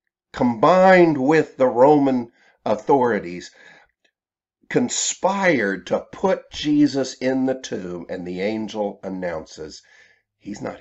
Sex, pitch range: male, 100-155 Hz